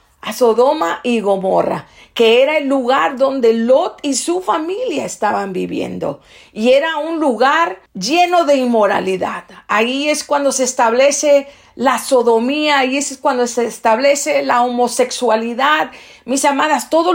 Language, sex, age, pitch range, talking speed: English, female, 50-69, 240-300 Hz, 135 wpm